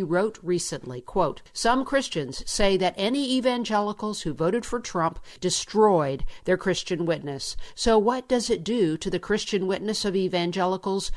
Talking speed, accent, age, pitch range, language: 150 wpm, American, 50-69, 170-215 Hz, English